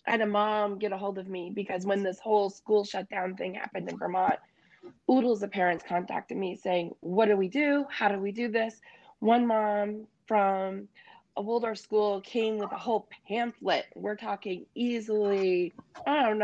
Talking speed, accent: 185 wpm, American